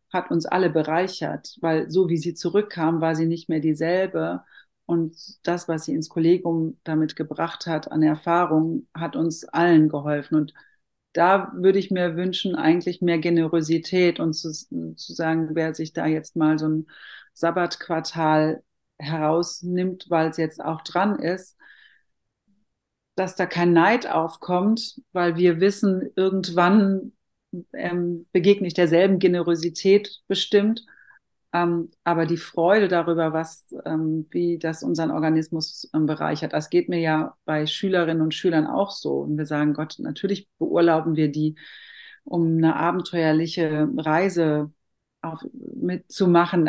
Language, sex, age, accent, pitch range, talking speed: German, female, 40-59, German, 160-185 Hz, 135 wpm